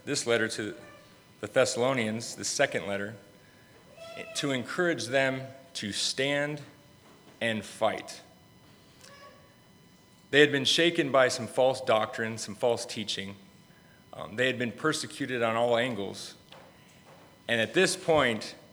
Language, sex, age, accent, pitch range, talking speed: English, male, 30-49, American, 115-135 Hz, 120 wpm